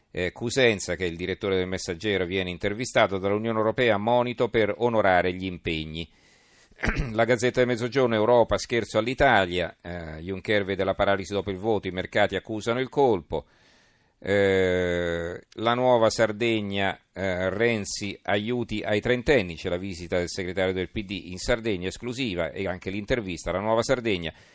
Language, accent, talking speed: Italian, native, 150 wpm